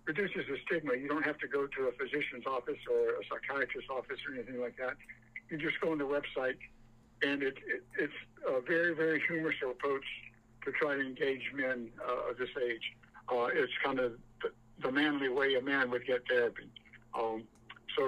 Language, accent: English, American